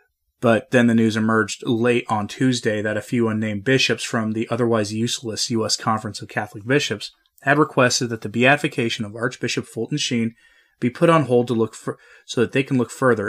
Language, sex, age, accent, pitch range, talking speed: English, male, 30-49, American, 110-130 Hz, 195 wpm